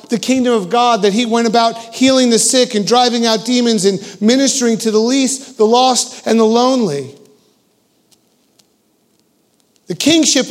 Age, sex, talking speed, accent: 50-69, male, 155 wpm, American